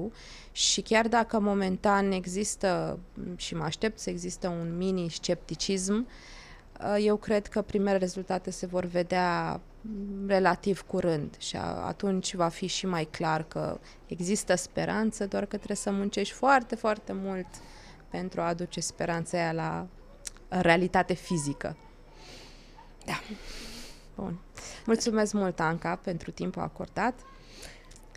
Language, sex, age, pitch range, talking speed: Romanian, female, 20-39, 180-210 Hz, 120 wpm